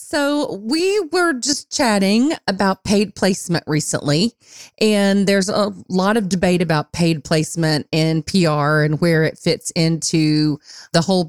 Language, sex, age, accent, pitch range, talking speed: English, female, 40-59, American, 155-195 Hz, 145 wpm